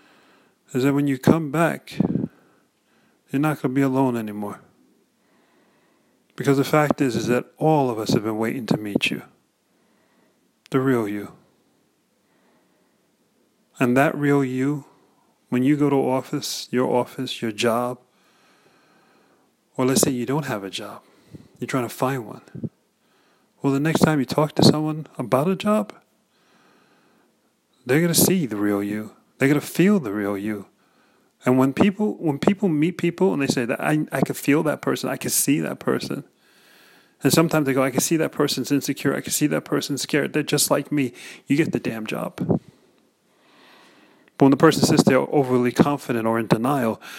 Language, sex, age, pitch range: English, male, 30-49, 125-150 Hz